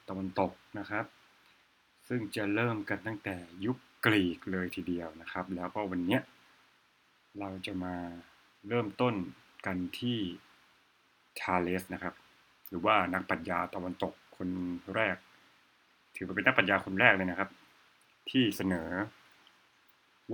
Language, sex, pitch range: Thai, male, 90-110 Hz